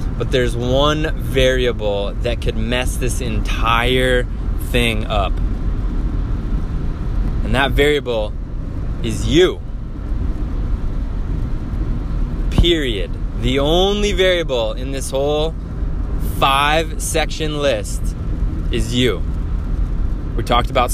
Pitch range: 95-130 Hz